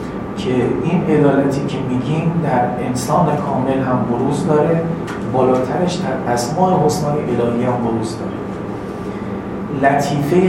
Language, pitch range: Persian, 120-165 Hz